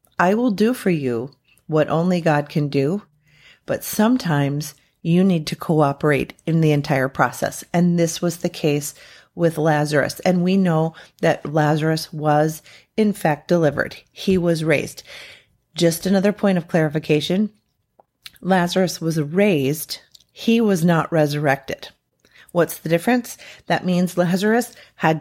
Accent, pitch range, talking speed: American, 150-180 Hz, 140 wpm